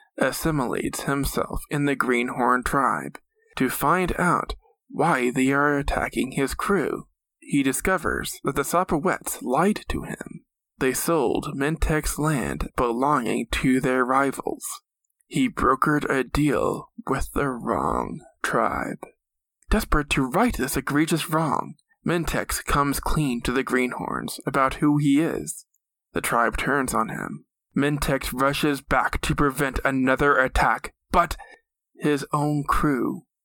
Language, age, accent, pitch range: English, 20-39, American, 130-155 Hz